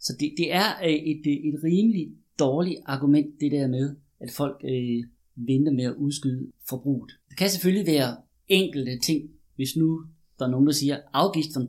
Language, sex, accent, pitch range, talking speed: Danish, male, native, 125-160 Hz, 180 wpm